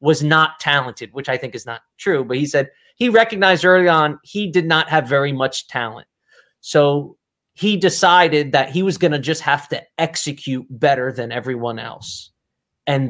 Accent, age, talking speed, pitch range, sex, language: American, 30-49, 185 wpm, 135-185 Hz, male, English